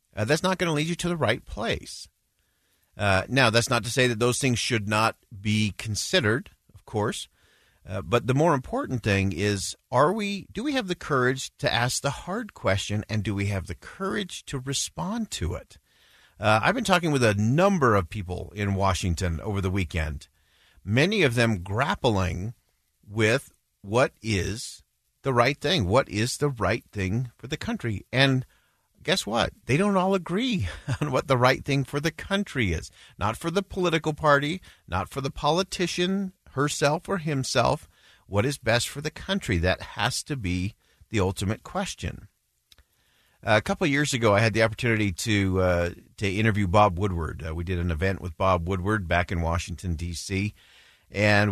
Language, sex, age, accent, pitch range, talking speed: English, male, 50-69, American, 95-140 Hz, 180 wpm